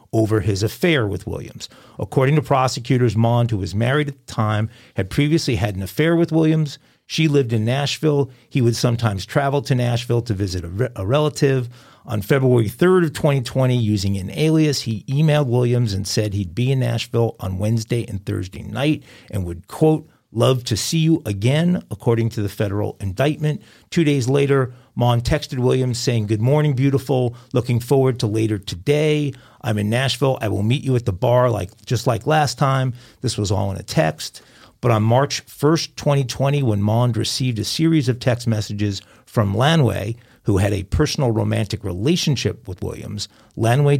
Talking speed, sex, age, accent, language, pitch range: 180 wpm, male, 50-69, American, English, 110-140 Hz